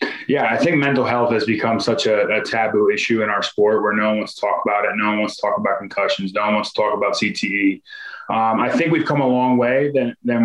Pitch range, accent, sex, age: 110-130 Hz, American, male, 20-39